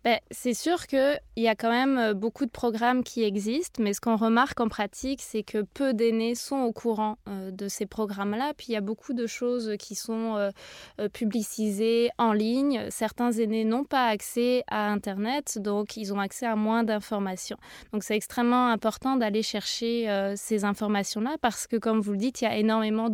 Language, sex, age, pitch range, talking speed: French, female, 20-39, 205-235 Hz, 195 wpm